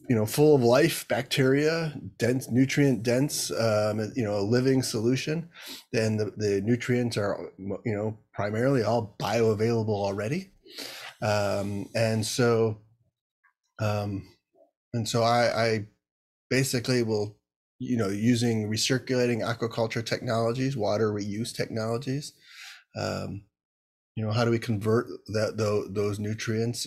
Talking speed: 125 wpm